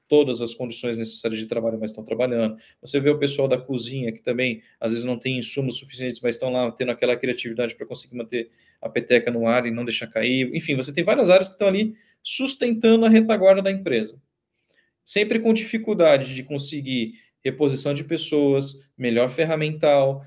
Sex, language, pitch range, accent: male, Portuguese, 120-160 Hz, Brazilian